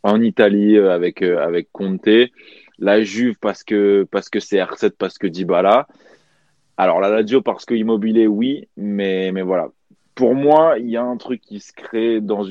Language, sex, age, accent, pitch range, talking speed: French, male, 20-39, French, 100-110 Hz, 180 wpm